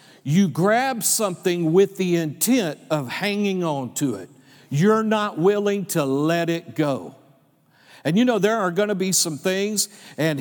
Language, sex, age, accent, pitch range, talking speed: English, male, 50-69, American, 155-205 Hz, 165 wpm